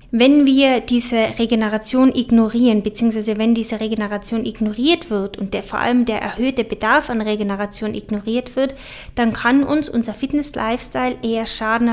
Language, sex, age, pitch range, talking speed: German, female, 10-29, 215-250 Hz, 145 wpm